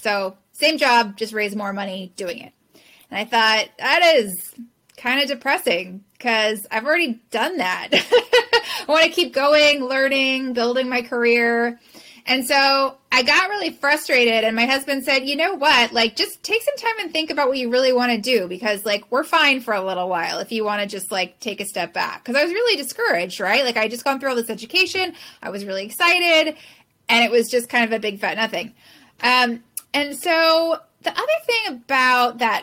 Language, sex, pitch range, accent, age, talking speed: English, female, 205-280 Hz, American, 20-39, 205 wpm